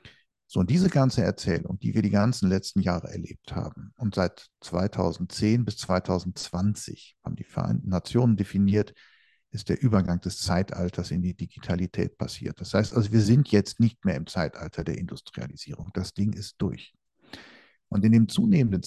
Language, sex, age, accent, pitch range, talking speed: German, male, 50-69, German, 95-110 Hz, 165 wpm